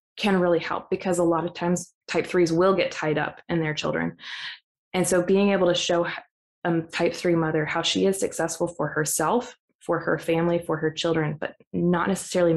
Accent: American